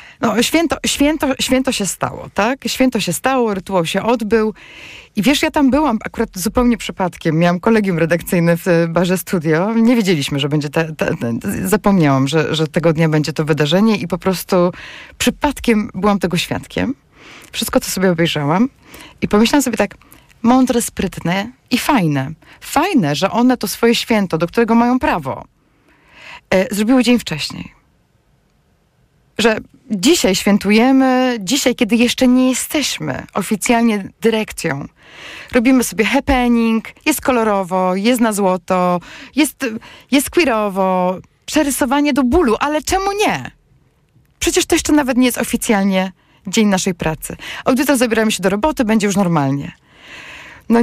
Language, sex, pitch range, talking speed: Polish, female, 185-250 Hz, 140 wpm